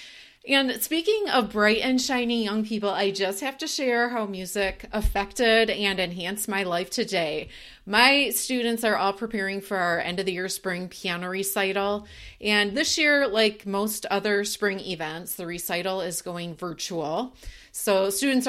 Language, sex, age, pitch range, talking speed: English, female, 30-49, 180-225 Hz, 160 wpm